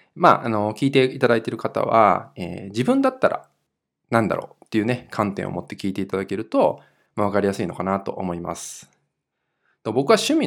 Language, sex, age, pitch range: Japanese, male, 20-39, 100-155 Hz